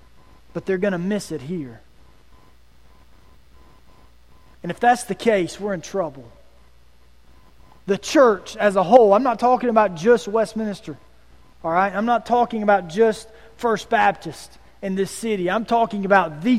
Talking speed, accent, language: 150 wpm, American, English